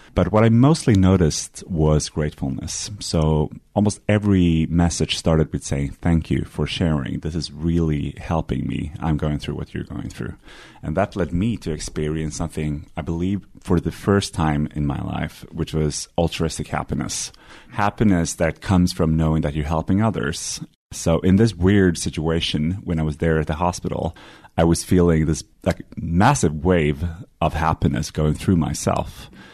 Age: 30-49